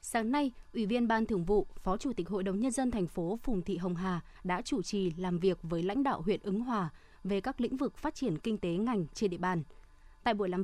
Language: Vietnamese